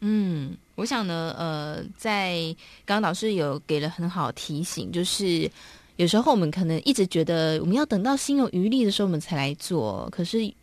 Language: Chinese